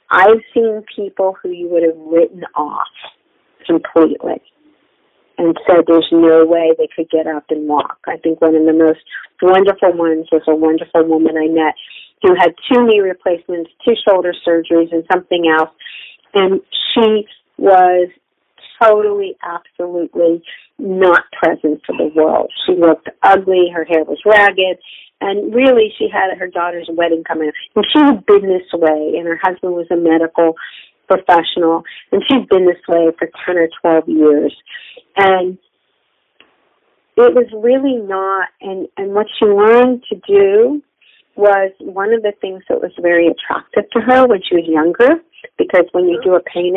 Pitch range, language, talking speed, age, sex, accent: 165-220 Hz, English, 165 wpm, 40-59, female, American